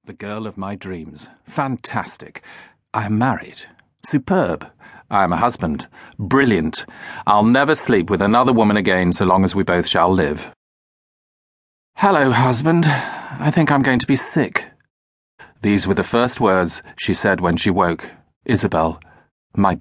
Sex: male